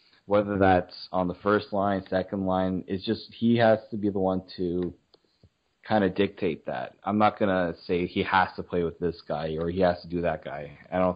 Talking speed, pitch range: 220 wpm, 95-110 Hz